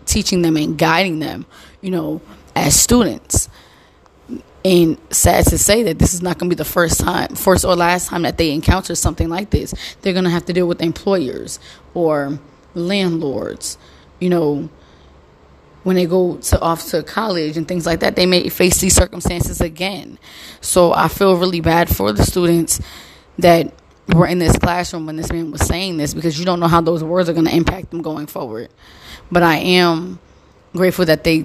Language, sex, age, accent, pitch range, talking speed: English, female, 20-39, American, 155-180 Hz, 195 wpm